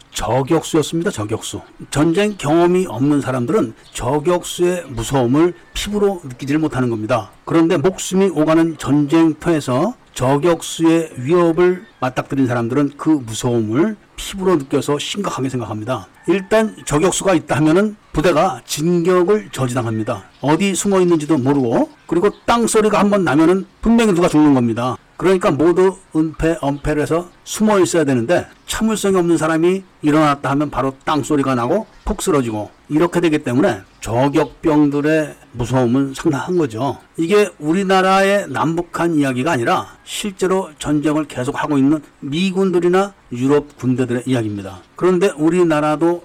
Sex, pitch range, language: male, 135-180 Hz, Korean